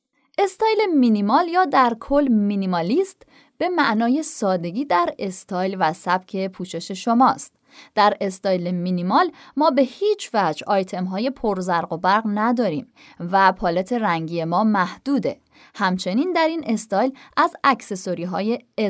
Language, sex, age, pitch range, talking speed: Persian, female, 20-39, 185-285 Hz, 125 wpm